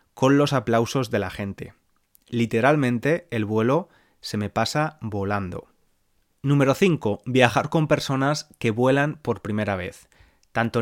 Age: 20-39